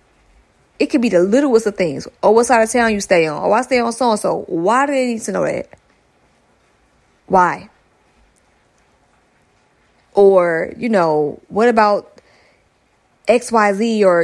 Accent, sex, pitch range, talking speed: American, female, 190-250 Hz, 150 wpm